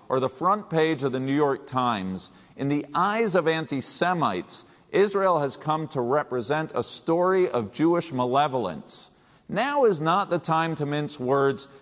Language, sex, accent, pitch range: English, male, American, 130-175 Hz